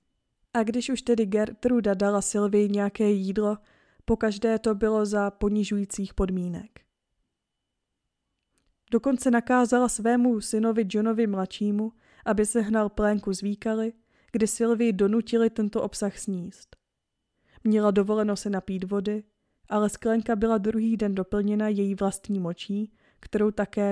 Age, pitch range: 20-39, 200-230 Hz